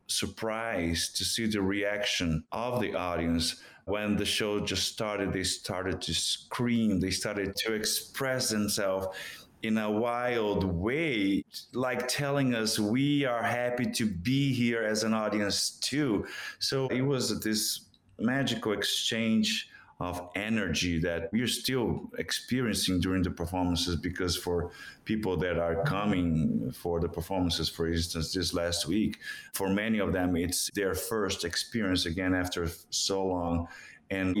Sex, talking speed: male, 140 wpm